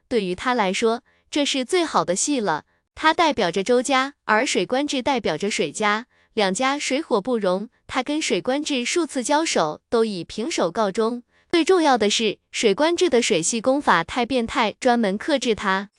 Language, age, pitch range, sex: Chinese, 20-39, 215-285 Hz, female